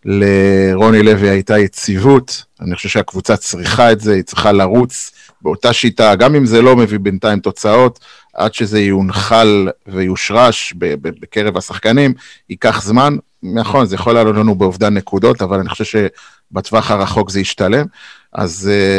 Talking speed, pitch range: 140 wpm, 100-115 Hz